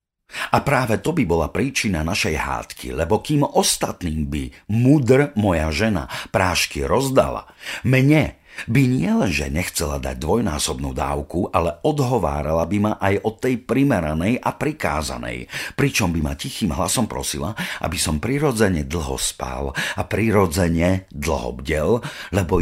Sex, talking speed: male, 135 wpm